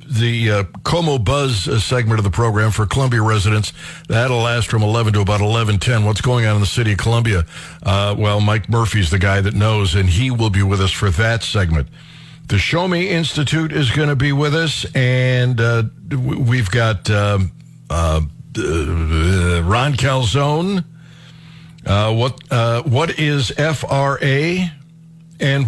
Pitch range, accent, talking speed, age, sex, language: 110-150 Hz, American, 160 wpm, 60-79, male, English